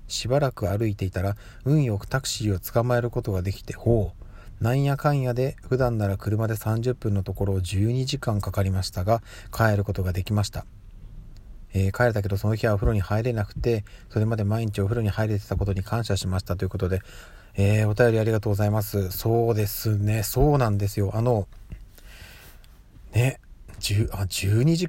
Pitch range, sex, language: 100-125 Hz, male, Japanese